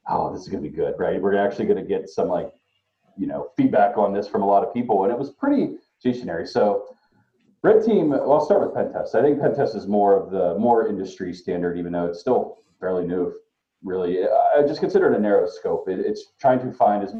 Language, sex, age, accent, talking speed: English, male, 40-59, American, 235 wpm